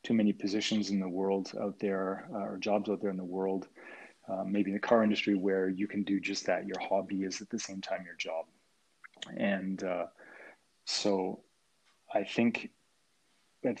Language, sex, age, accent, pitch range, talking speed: English, male, 30-49, Canadian, 95-110 Hz, 185 wpm